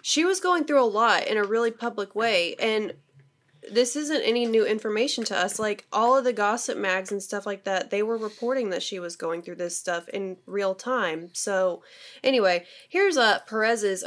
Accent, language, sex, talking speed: American, English, female, 205 wpm